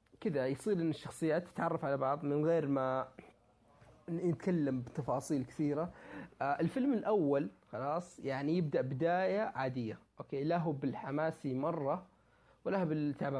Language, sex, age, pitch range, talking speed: Arabic, male, 30-49, 130-165 Hz, 120 wpm